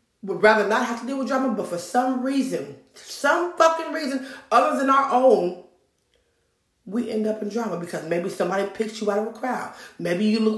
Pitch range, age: 210-265 Hz, 30-49